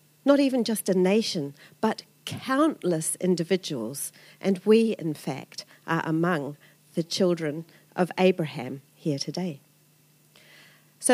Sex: female